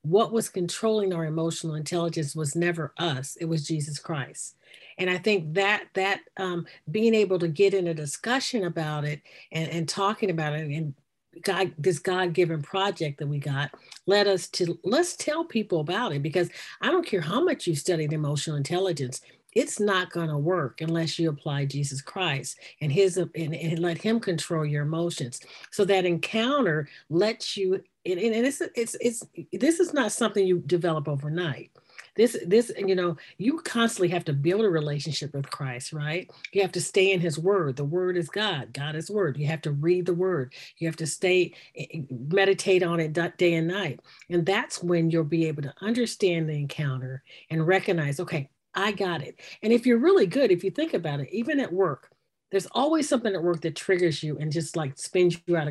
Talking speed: 195 wpm